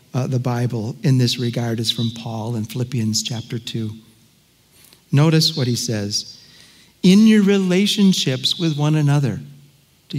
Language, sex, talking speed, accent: English, male, 140 wpm, American